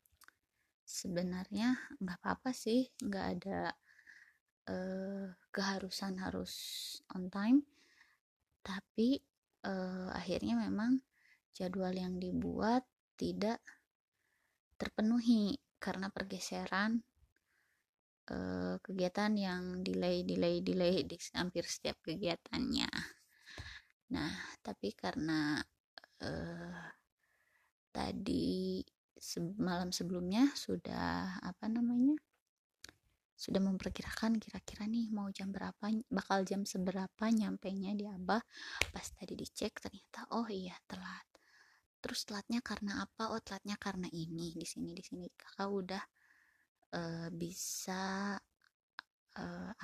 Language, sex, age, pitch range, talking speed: Indonesian, female, 20-39, 180-220 Hz, 95 wpm